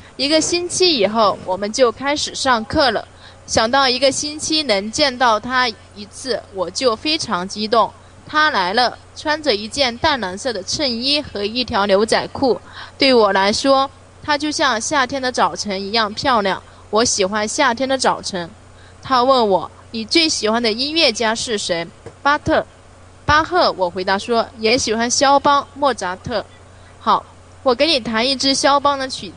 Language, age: English, 20-39